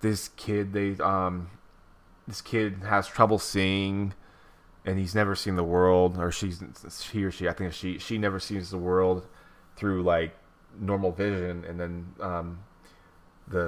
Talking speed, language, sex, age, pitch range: 160 wpm, English, male, 20-39, 85-100 Hz